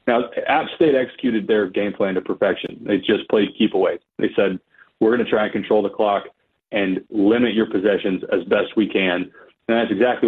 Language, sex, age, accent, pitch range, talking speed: English, male, 30-49, American, 100-120 Hz, 200 wpm